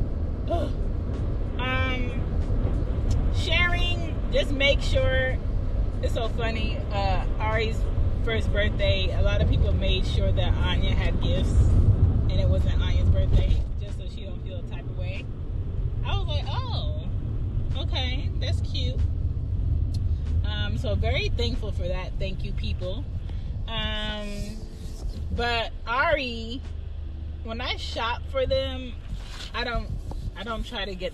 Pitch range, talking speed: 85-100 Hz, 130 wpm